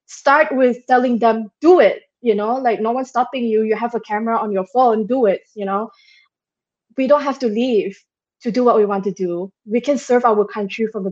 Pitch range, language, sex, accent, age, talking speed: 195-235 Hz, English, female, Malaysian, 20-39, 230 wpm